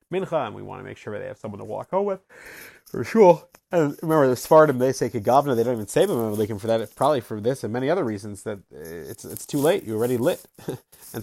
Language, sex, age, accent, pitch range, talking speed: English, male, 30-49, American, 125-160 Hz, 260 wpm